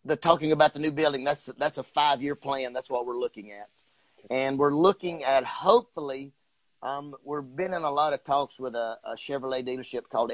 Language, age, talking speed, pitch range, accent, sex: English, 30-49, 205 wpm, 130-155 Hz, American, male